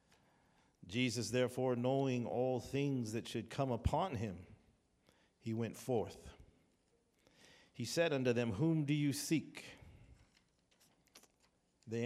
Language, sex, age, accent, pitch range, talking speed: English, male, 50-69, American, 110-135 Hz, 110 wpm